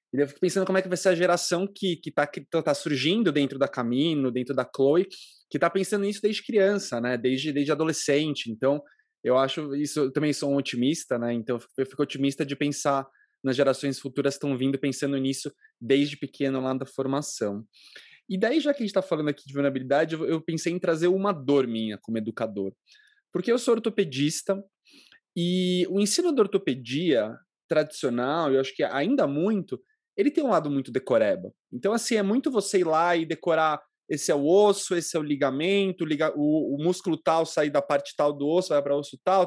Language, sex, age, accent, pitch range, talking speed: Portuguese, male, 20-39, Brazilian, 140-190 Hz, 205 wpm